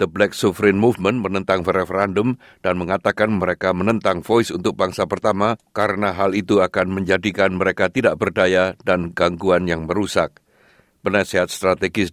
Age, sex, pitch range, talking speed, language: 60-79, male, 90-110 Hz, 140 wpm, Indonesian